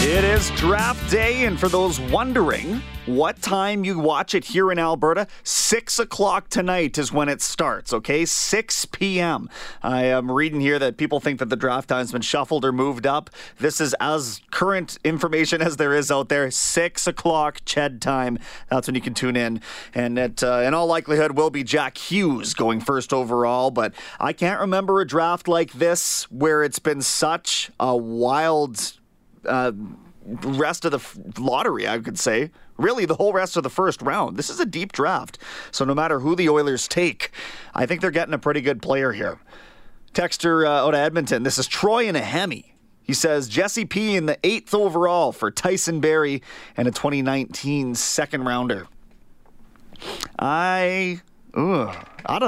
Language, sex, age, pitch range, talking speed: English, male, 30-49, 130-175 Hz, 180 wpm